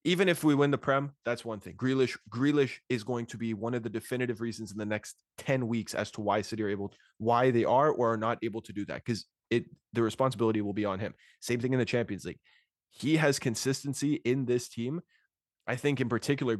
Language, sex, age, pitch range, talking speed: English, male, 20-39, 110-135 Hz, 235 wpm